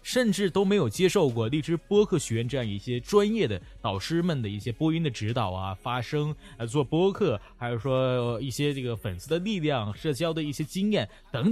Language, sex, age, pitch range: Chinese, male, 20-39, 115-175 Hz